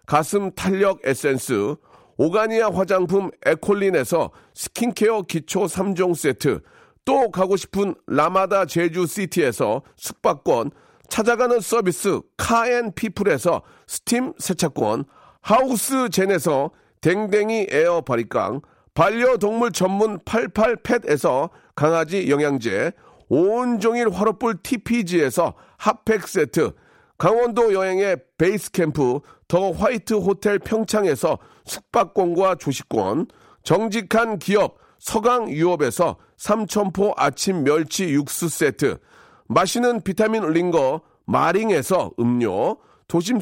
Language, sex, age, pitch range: Korean, male, 40-59, 175-230 Hz